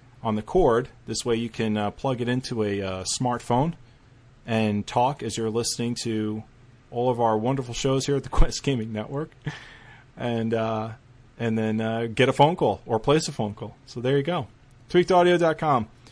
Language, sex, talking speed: English, male, 185 wpm